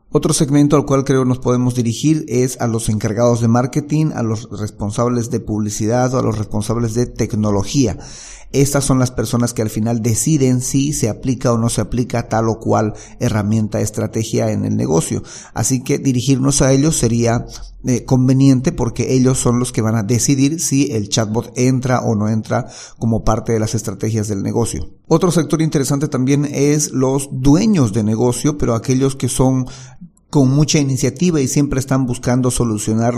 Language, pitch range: Spanish, 110-130 Hz